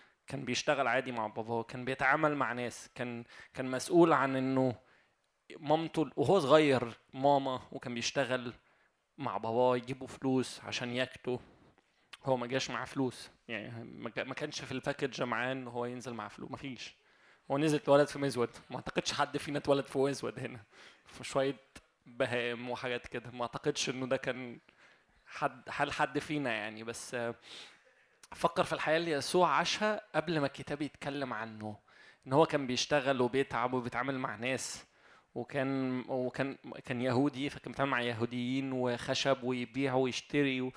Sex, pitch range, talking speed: male, 125-145 Hz, 150 wpm